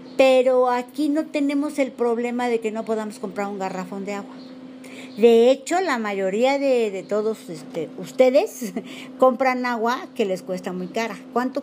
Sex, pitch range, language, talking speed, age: female, 210-260 Hz, Spanish, 165 wpm, 50-69